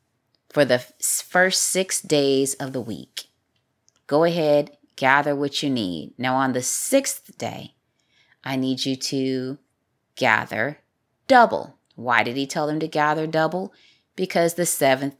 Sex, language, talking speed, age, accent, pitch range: female, English, 140 wpm, 30-49, American, 125-160 Hz